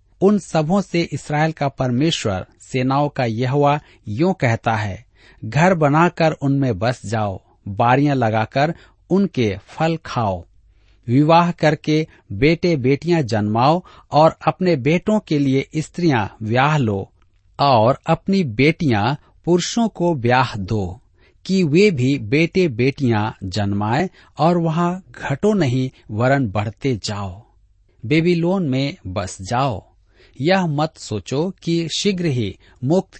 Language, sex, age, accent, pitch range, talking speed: Hindi, male, 50-69, native, 110-165 Hz, 120 wpm